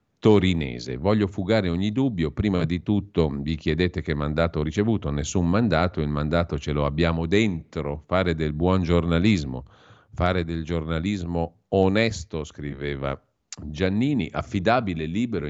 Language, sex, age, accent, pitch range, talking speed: Italian, male, 50-69, native, 80-105 Hz, 130 wpm